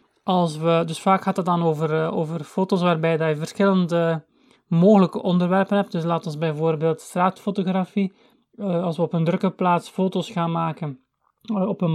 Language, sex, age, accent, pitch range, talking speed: Dutch, male, 30-49, Dutch, 175-200 Hz, 165 wpm